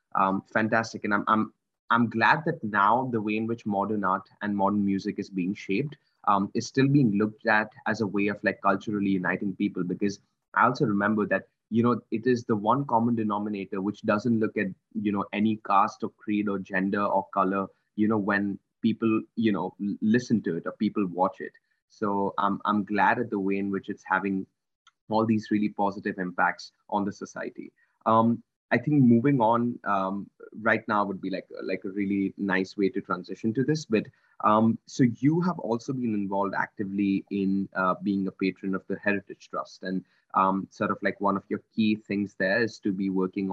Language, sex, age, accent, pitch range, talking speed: English, male, 20-39, Indian, 100-115 Hz, 200 wpm